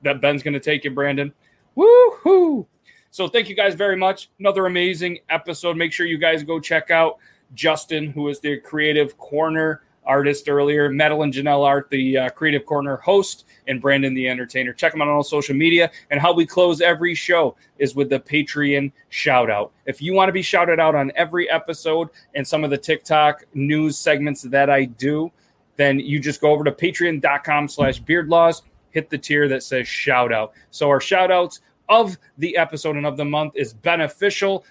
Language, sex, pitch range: English, male, 140-165 Hz